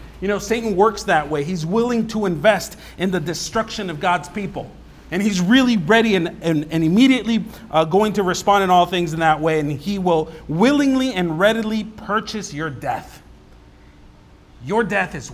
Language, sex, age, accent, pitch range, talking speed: English, male, 40-59, American, 145-195 Hz, 175 wpm